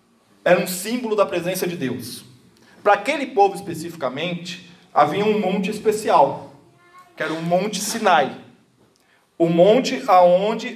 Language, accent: Portuguese, Brazilian